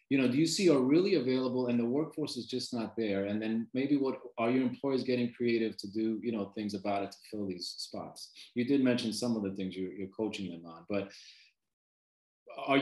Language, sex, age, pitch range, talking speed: English, male, 30-49, 120-150 Hz, 230 wpm